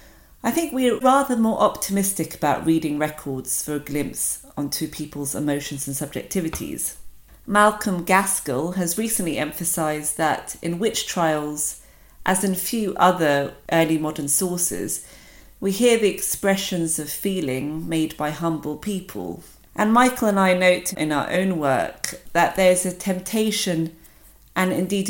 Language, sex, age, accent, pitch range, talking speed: English, female, 40-59, British, 155-200 Hz, 145 wpm